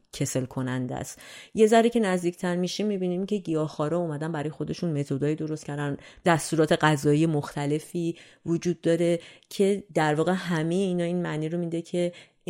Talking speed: 155 wpm